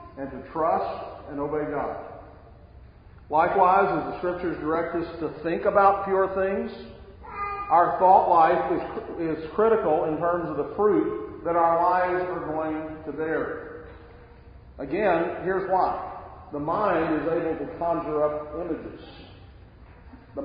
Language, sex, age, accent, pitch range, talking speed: English, male, 40-59, American, 150-185 Hz, 140 wpm